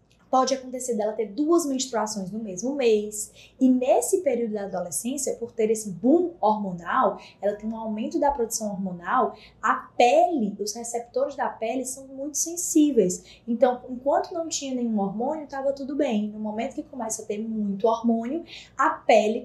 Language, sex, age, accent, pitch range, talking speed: Portuguese, female, 10-29, Brazilian, 215-290 Hz, 165 wpm